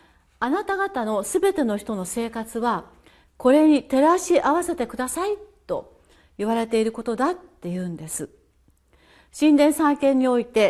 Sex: female